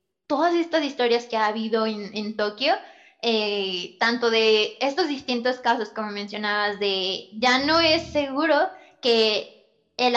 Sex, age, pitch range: female, 20-39, 215-265 Hz